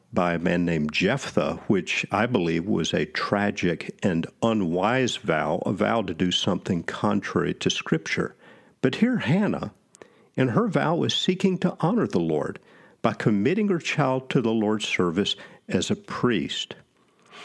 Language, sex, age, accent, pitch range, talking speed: English, male, 50-69, American, 90-130 Hz, 155 wpm